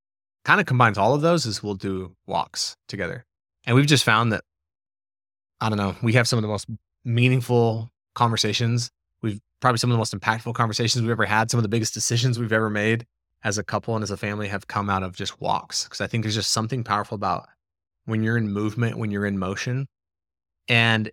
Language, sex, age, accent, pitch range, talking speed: English, male, 30-49, American, 100-115 Hz, 215 wpm